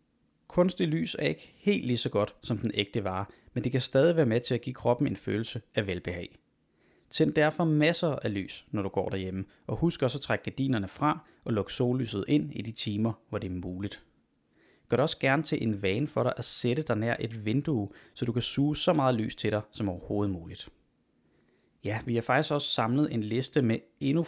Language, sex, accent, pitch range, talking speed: Danish, male, native, 110-140 Hz, 220 wpm